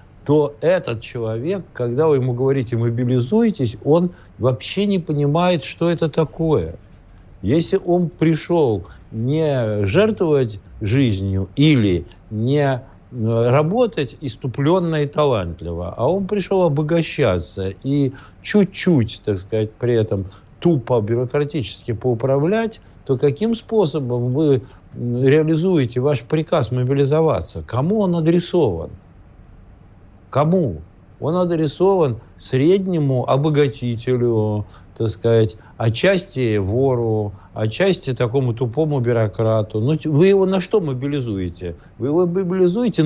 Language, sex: Russian, male